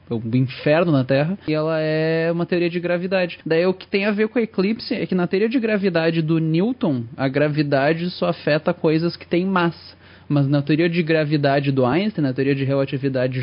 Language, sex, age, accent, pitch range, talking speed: Portuguese, male, 20-39, Brazilian, 155-185 Hz, 210 wpm